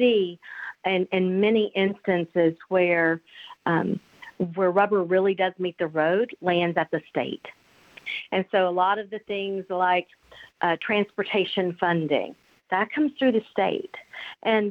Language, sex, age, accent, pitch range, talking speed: English, female, 50-69, American, 180-225 Hz, 140 wpm